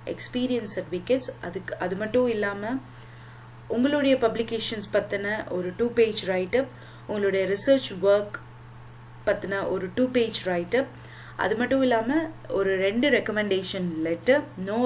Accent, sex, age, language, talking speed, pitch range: native, female, 20-39, Tamil, 60 wpm, 180-240 Hz